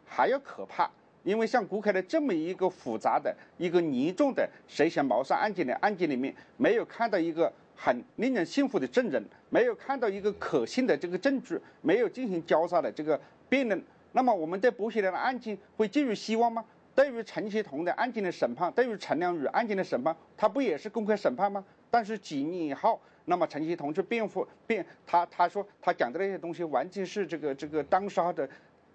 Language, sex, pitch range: English, male, 175-255 Hz